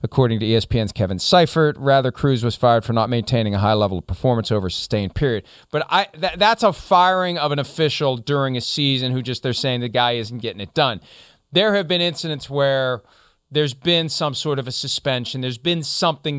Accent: American